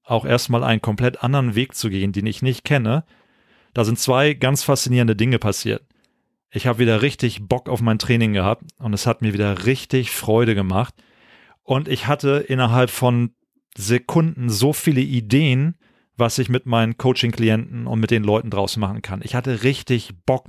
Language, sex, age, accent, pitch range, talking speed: German, male, 40-59, German, 115-130 Hz, 180 wpm